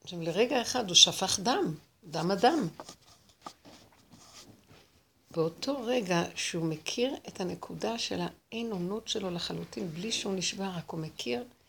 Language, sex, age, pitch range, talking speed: Hebrew, female, 60-79, 160-200 Hz, 130 wpm